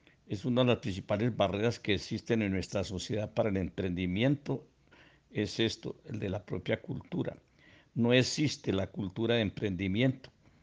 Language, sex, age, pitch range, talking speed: Spanish, male, 60-79, 100-125 Hz, 150 wpm